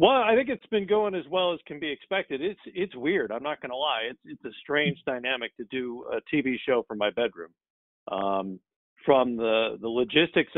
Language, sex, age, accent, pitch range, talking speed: English, male, 50-69, American, 115-145 Hz, 215 wpm